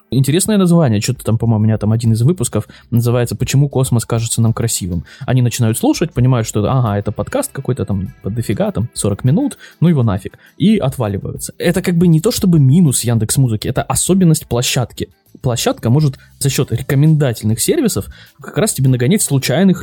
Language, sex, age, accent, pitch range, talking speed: Russian, male, 20-39, native, 110-140 Hz, 180 wpm